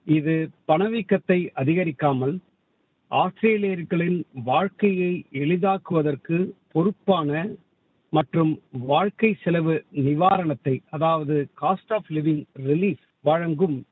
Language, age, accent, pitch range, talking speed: Tamil, 50-69, native, 150-190 Hz, 65 wpm